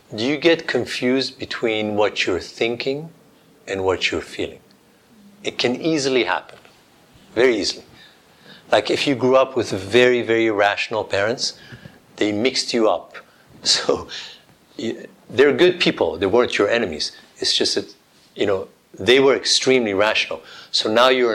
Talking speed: 145 wpm